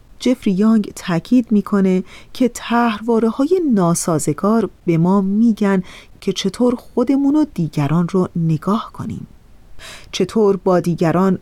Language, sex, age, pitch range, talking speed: Persian, female, 30-49, 180-235 Hz, 105 wpm